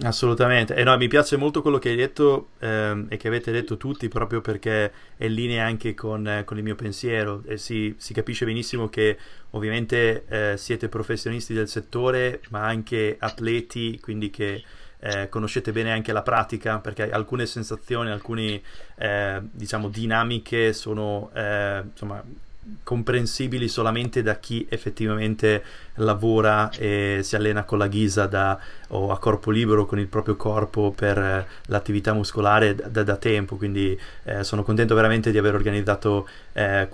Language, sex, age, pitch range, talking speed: Italian, male, 30-49, 105-115 Hz, 160 wpm